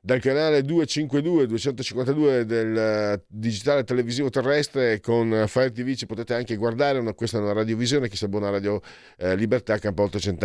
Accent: native